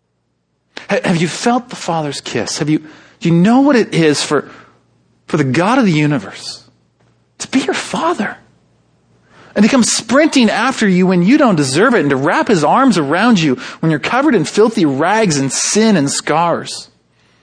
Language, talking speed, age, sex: English, 185 wpm, 30-49, male